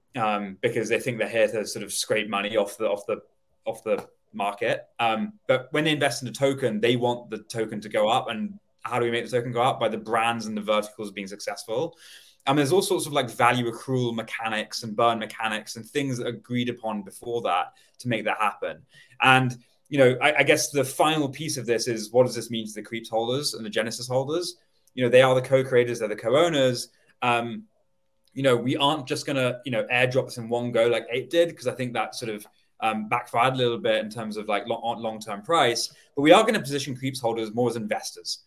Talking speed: 235 wpm